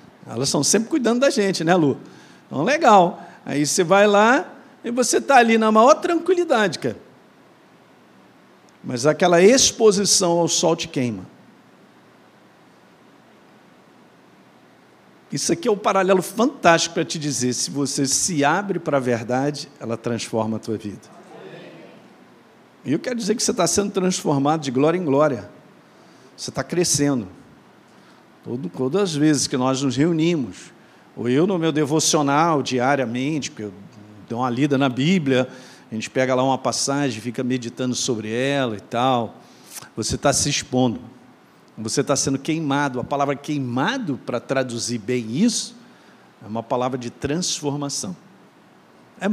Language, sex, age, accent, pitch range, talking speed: Portuguese, male, 50-69, Brazilian, 125-175 Hz, 140 wpm